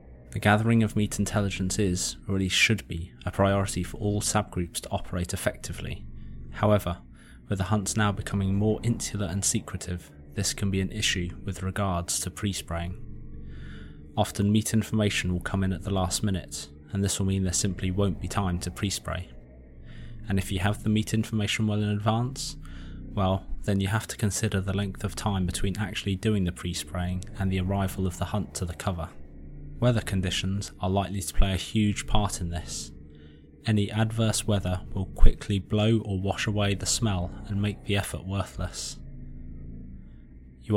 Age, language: 20-39, English